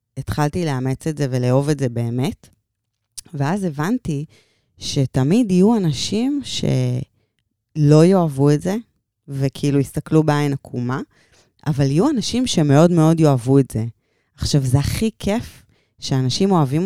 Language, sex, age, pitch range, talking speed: Hebrew, female, 20-39, 130-165 Hz, 125 wpm